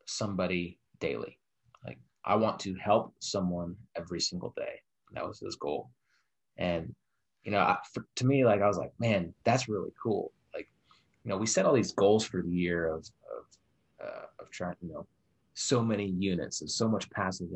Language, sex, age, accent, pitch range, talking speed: English, male, 30-49, American, 90-105 Hz, 190 wpm